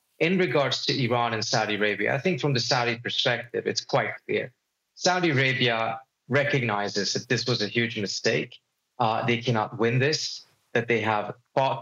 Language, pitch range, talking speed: English, 110-135 Hz, 175 wpm